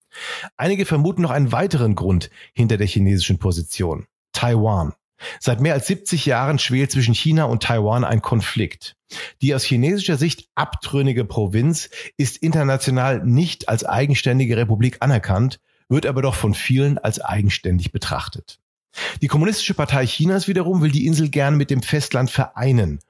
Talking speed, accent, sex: 150 wpm, German, male